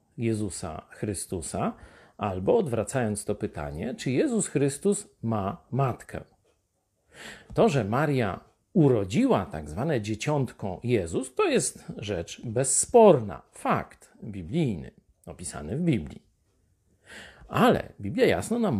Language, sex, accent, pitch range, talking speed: Polish, male, native, 115-195 Hz, 100 wpm